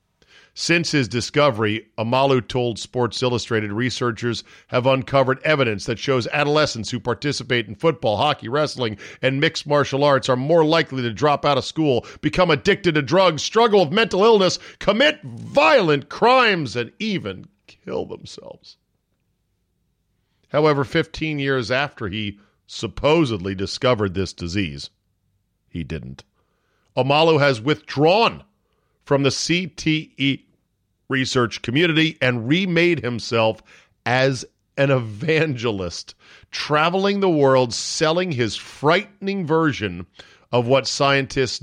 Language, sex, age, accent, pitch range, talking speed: English, male, 50-69, American, 110-155 Hz, 120 wpm